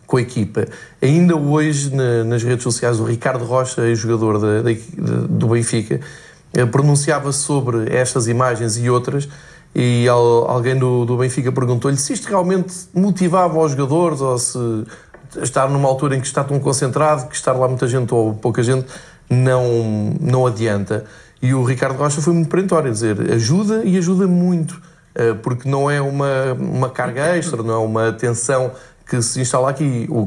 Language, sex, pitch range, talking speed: Portuguese, male, 120-155 Hz, 175 wpm